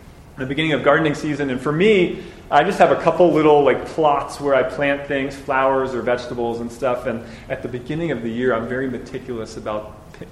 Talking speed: 215 wpm